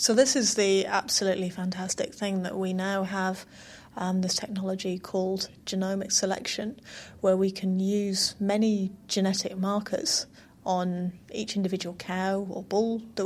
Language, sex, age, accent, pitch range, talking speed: English, female, 30-49, British, 185-205 Hz, 140 wpm